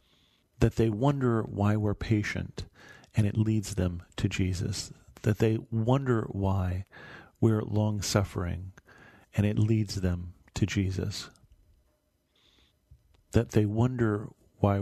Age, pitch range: 40-59, 95-115 Hz